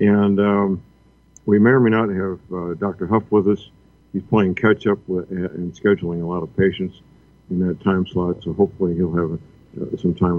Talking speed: 190 wpm